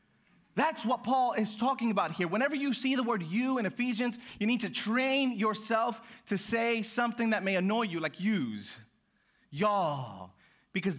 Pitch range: 160-215 Hz